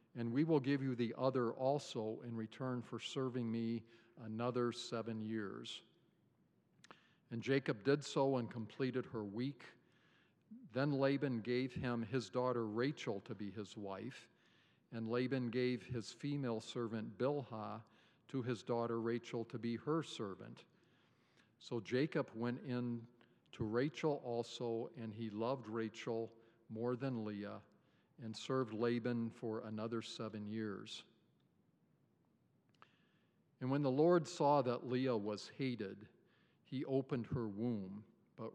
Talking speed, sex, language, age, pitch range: 130 wpm, male, English, 50-69, 115-135 Hz